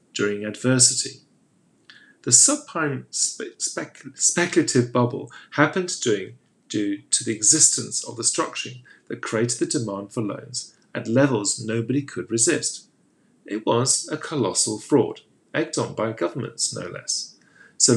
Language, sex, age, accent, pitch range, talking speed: English, male, 40-59, British, 115-155 Hz, 130 wpm